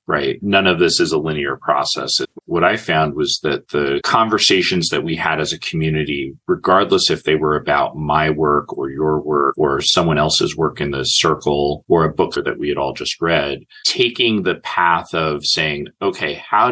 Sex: male